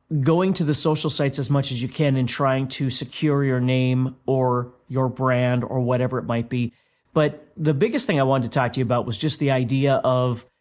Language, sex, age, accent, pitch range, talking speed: English, male, 30-49, American, 120-140 Hz, 225 wpm